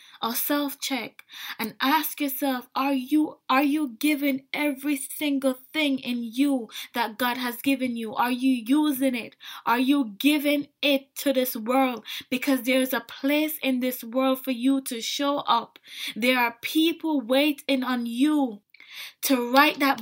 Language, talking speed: English, 160 wpm